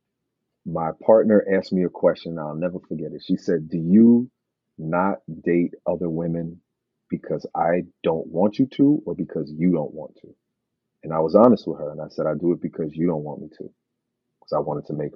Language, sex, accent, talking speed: English, male, American, 210 wpm